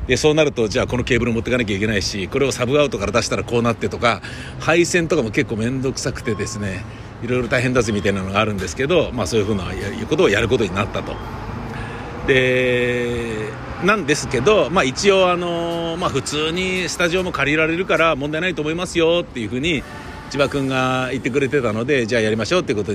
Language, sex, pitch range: Japanese, male, 105-150 Hz